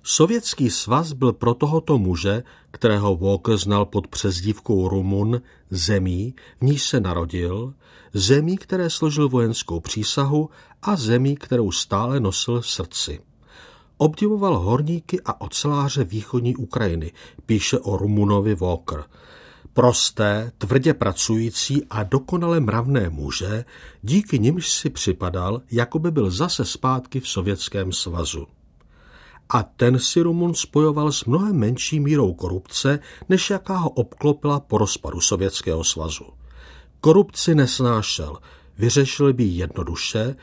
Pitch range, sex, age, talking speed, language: 95-140 Hz, male, 50-69, 120 wpm, Czech